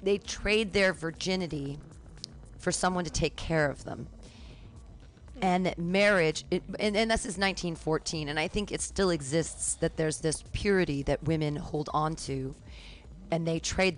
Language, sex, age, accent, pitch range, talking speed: English, female, 40-59, American, 145-185 Hz, 160 wpm